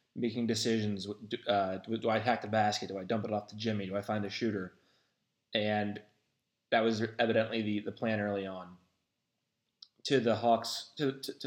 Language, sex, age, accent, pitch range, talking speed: English, male, 20-39, American, 105-120 Hz, 195 wpm